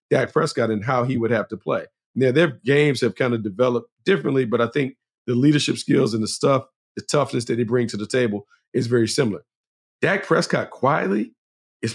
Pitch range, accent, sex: 110-130 Hz, American, male